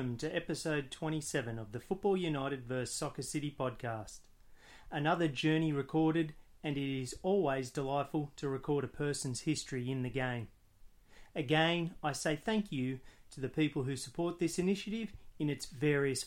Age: 30-49